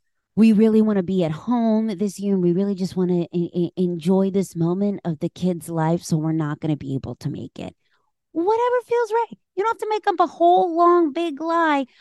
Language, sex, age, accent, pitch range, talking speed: English, female, 30-49, American, 145-200 Hz, 230 wpm